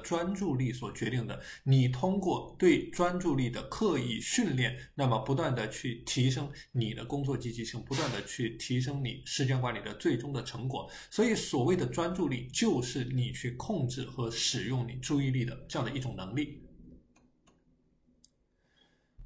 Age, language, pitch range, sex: 20-39, Chinese, 120-150 Hz, male